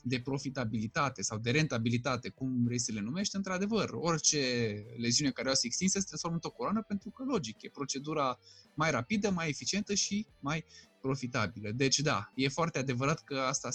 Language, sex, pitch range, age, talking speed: Romanian, male, 125-175 Hz, 20-39, 180 wpm